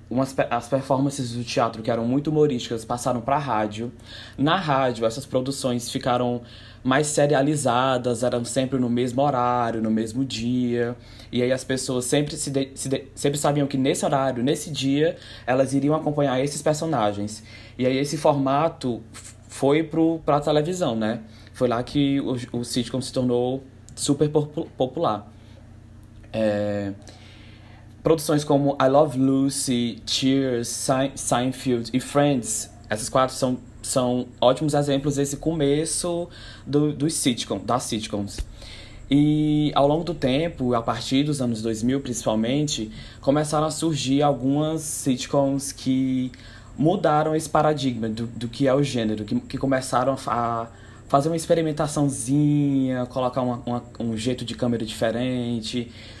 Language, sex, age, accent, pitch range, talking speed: Portuguese, male, 20-39, Brazilian, 115-140 Hz, 140 wpm